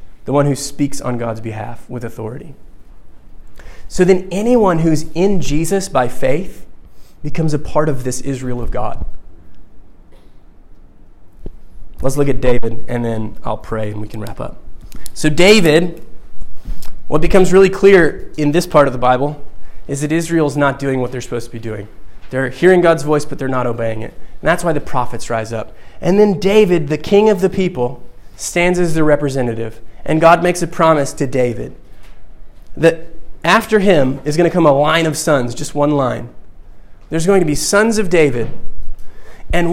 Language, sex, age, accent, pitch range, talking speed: English, male, 20-39, American, 115-170 Hz, 180 wpm